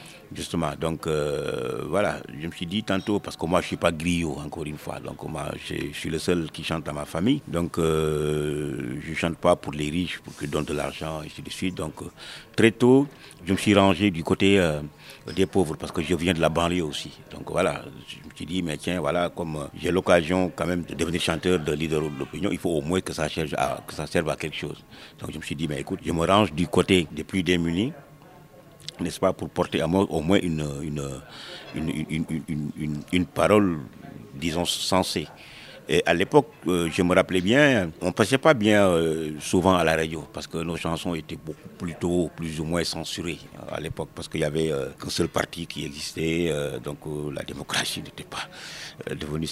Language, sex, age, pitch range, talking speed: French, male, 50-69, 75-90 Hz, 220 wpm